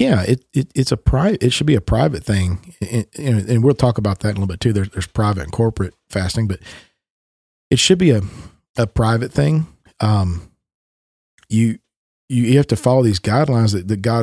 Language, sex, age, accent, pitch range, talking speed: English, male, 40-59, American, 100-120 Hz, 205 wpm